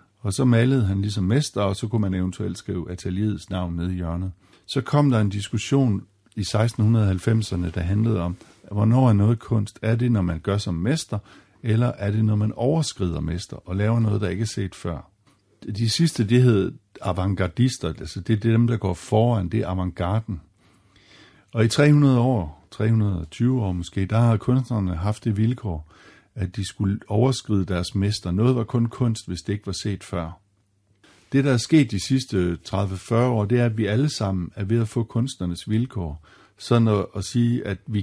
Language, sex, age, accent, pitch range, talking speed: Danish, male, 60-79, native, 95-115 Hz, 195 wpm